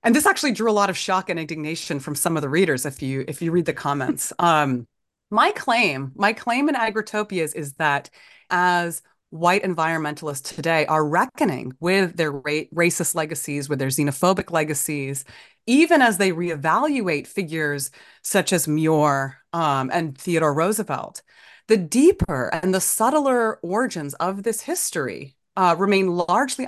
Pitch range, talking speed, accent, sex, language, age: 155-220 Hz, 155 wpm, American, female, English, 30-49